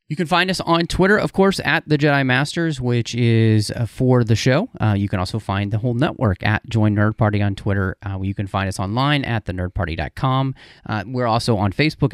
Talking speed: 215 wpm